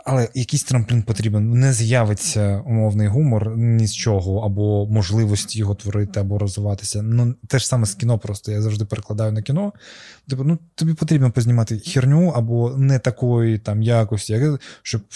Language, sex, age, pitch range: Ukrainian, male, 20-39, 105-125 Hz